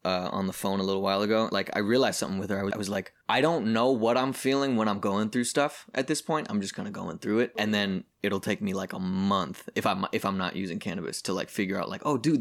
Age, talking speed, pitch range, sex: 20-39, 290 wpm, 95-115 Hz, male